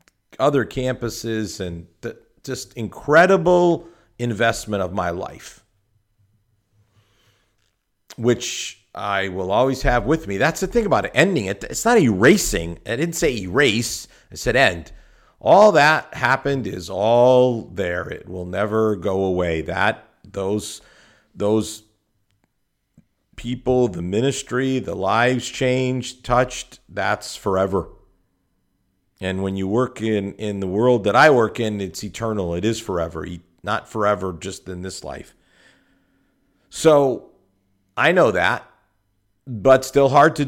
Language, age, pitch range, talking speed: English, 50-69, 95-120 Hz, 130 wpm